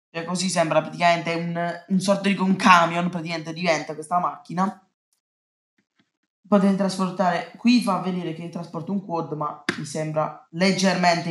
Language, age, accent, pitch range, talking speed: Italian, 20-39, native, 165-205 Hz, 140 wpm